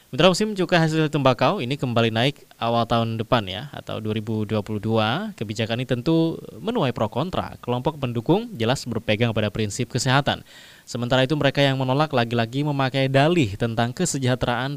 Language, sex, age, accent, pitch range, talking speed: Indonesian, male, 20-39, native, 110-145 Hz, 150 wpm